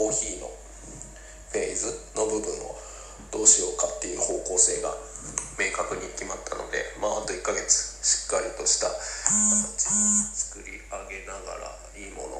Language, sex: Japanese, male